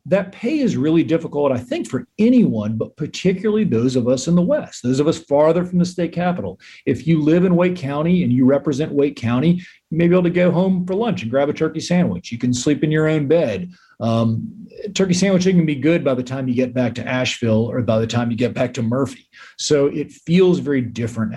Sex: male